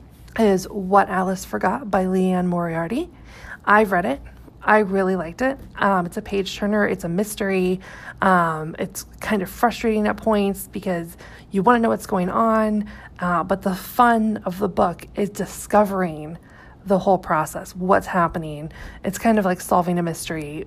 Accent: American